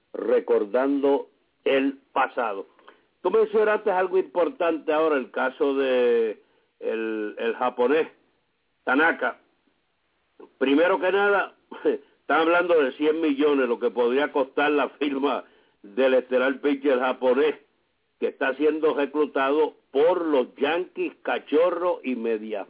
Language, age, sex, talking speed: English, 60-79, male, 115 wpm